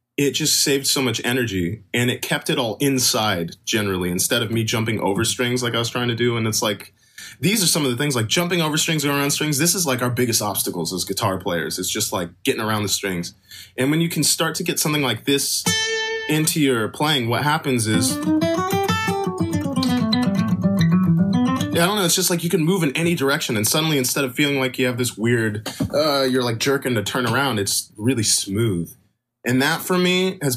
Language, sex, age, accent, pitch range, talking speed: English, male, 20-39, American, 105-145 Hz, 215 wpm